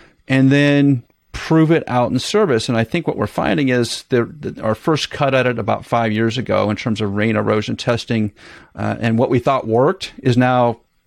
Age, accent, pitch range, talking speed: 40-59, American, 110-145 Hz, 210 wpm